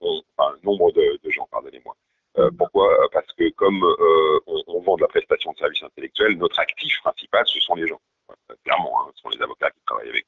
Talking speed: 230 wpm